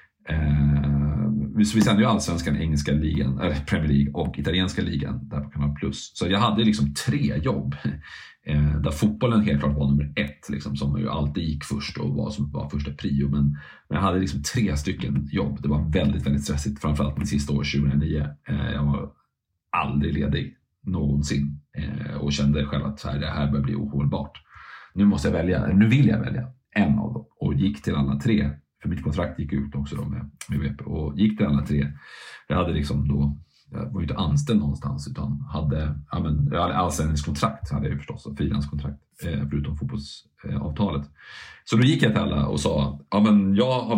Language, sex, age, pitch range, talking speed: Swedish, male, 30-49, 70-75 Hz, 200 wpm